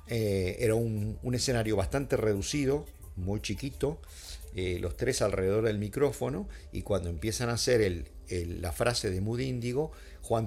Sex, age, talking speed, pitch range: male, 50-69, 155 wpm, 90-115 Hz